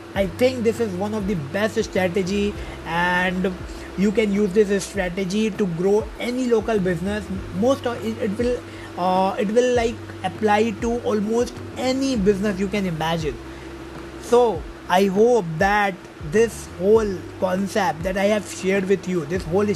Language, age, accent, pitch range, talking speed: English, 20-39, Indian, 180-215 Hz, 160 wpm